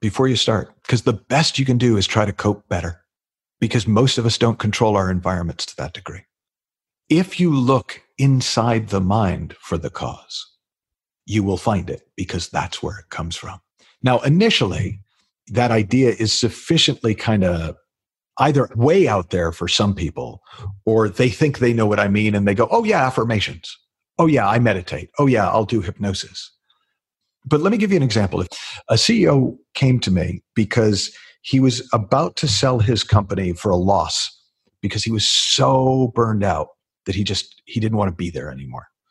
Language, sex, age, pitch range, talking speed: English, male, 50-69, 95-125 Hz, 185 wpm